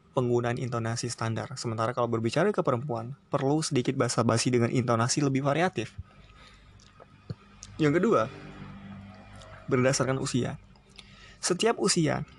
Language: Indonesian